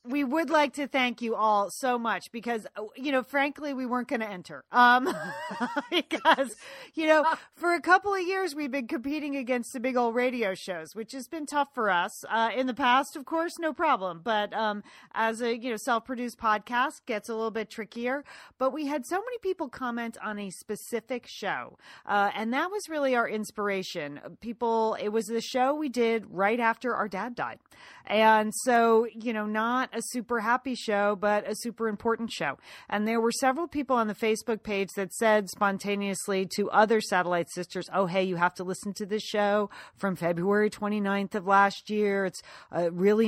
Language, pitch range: English, 195-250 Hz